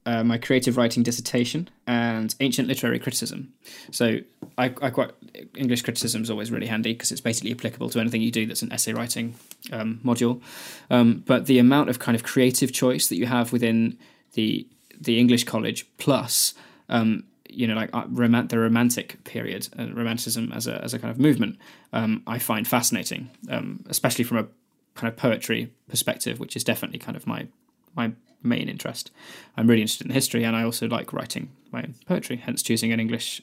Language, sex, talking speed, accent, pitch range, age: English, male, 190 wpm, British, 115-125 Hz, 20-39